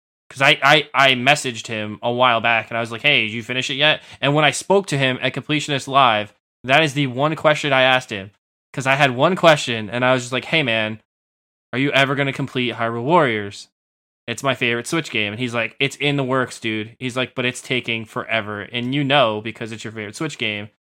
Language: English